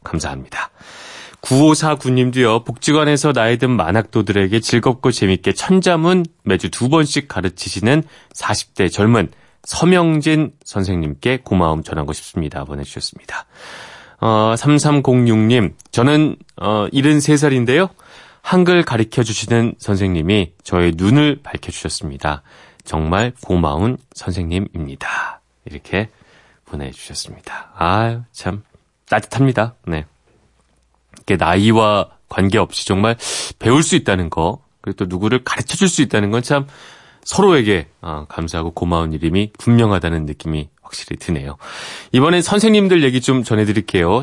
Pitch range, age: 95-135 Hz, 30-49